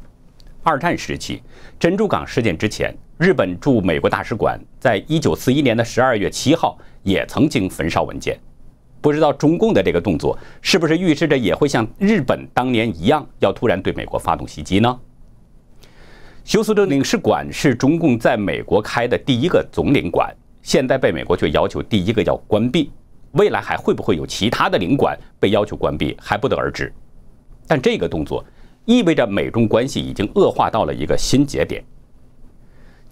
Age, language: 50-69, Chinese